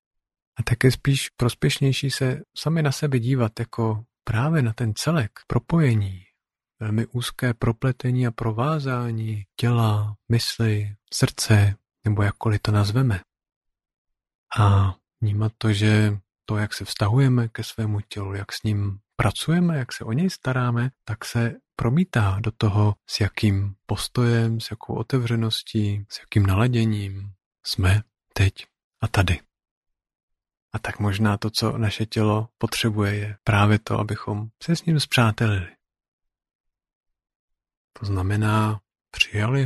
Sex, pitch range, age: male, 105-125 Hz, 40-59